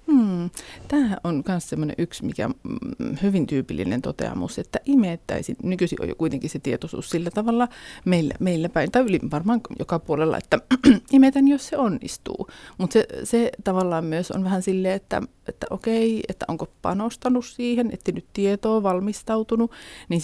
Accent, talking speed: native, 155 wpm